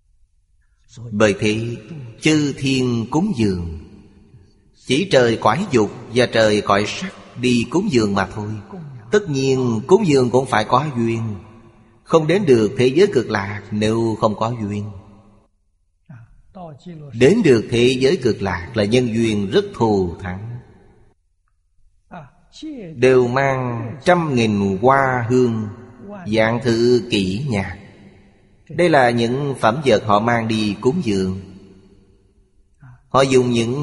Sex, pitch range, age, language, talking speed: male, 100-125 Hz, 30-49, Vietnamese, 130 wpm